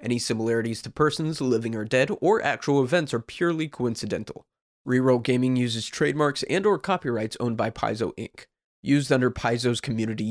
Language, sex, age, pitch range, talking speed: English, male, 20-39, 120-150 Hz, 165 wpm